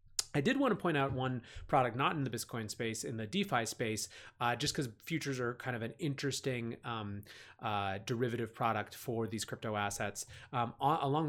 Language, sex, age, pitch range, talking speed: English, male, 30-49, 110-135 Hz, 190 wpm